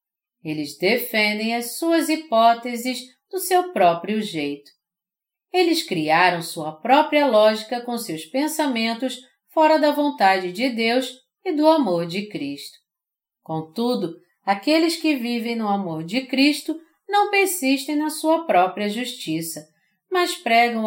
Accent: Brazilian